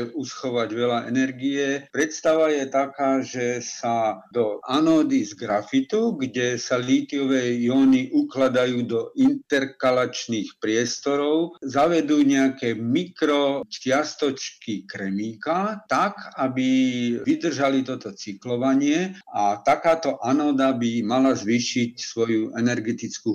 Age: 50-69